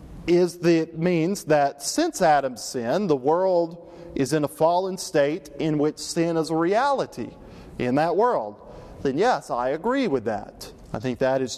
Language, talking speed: English, 175 wpm